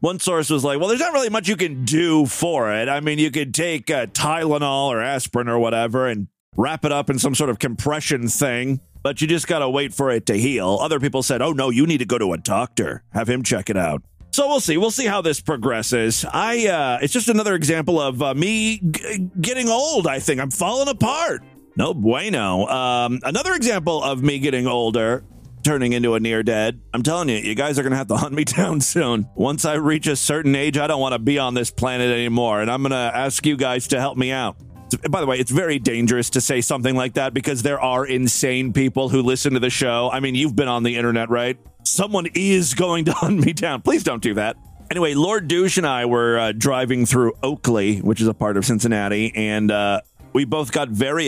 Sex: male